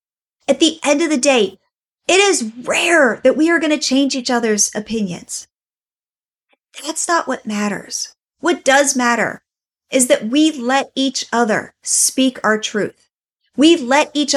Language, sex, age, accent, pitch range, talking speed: English, female, 30-49, American, 230-290 Hz, 155 wpm